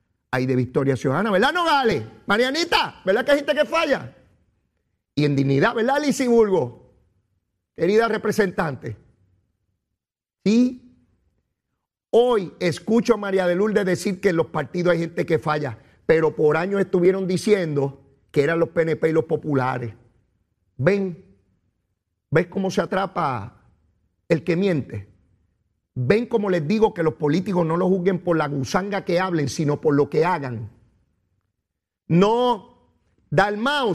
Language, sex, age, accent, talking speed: Spanish, male, 40-59, American, 140 wpm